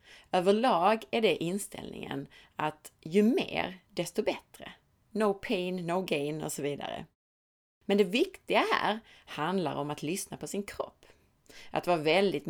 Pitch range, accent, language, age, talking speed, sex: 150-205 Hz, native, Swedish, 30-49, 145 wpm, female